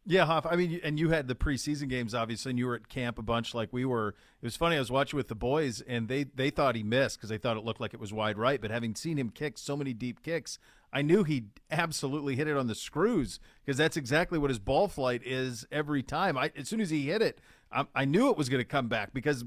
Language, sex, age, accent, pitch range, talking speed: English, male, 40-59, American, 120-155 Hz, 275 wpm